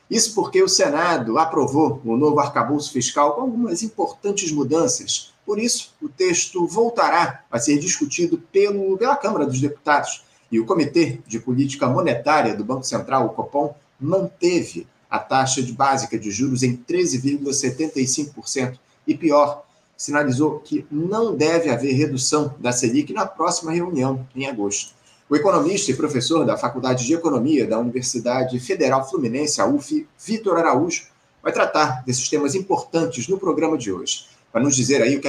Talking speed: 155 wpm